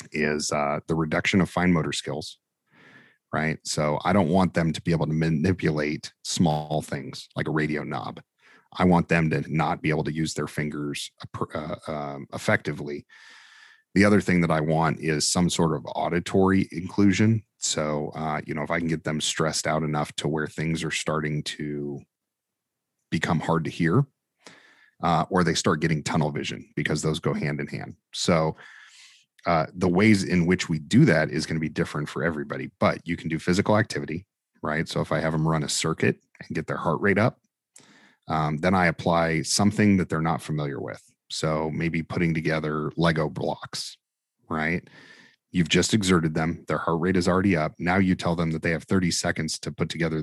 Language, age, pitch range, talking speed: English, 40-59, 75-85 Hz, 195 wpm